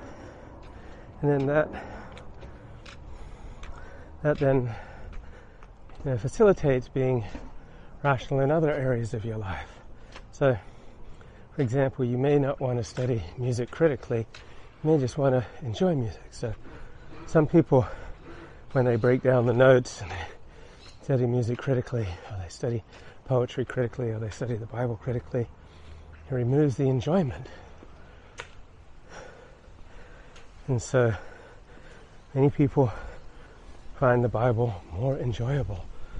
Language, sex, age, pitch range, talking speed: English, male, 30-49, 110-135 Hz, 120 wpm